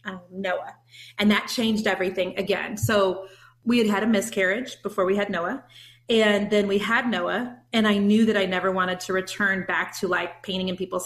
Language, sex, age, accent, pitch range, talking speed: English, female, 30-49, American, 190-225 Hz, 200 wpm